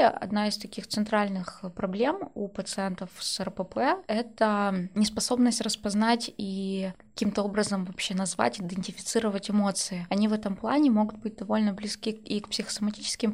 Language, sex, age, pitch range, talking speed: Russian, female, 20-39, 195-230 Hz, 135 wpm